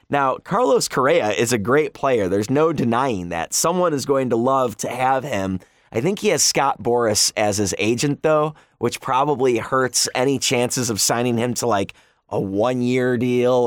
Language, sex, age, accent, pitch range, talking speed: English, male, 20-39, American, 115-150 Hz, 185 wpm